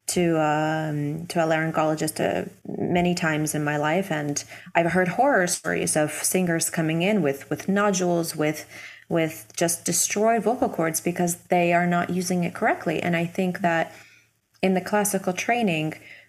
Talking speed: 160 wpm